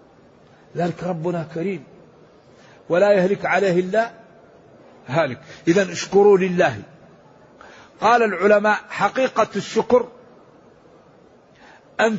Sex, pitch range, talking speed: male, 175-215 Hz, 80 wpm